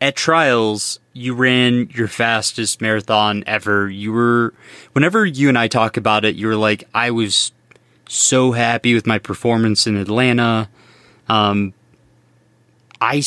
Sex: male